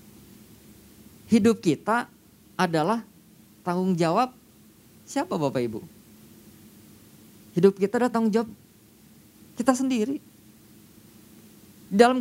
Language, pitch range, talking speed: Indonesian, 185-245 Hz, 80 wpm